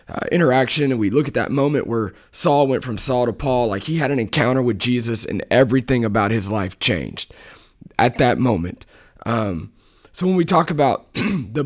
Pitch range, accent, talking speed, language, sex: 110-145 Hz, American, 195 wpm, English, male